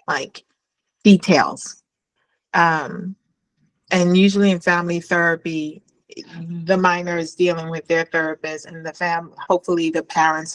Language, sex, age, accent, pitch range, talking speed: English, female, 30-49, American, 160-190 Hz, 120 wpm